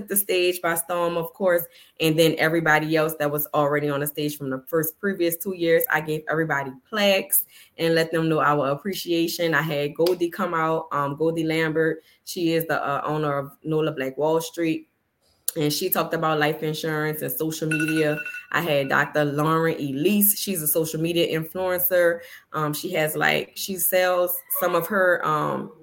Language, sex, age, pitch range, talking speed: English, female, 10-29, 150-170 Hz, 185 wpm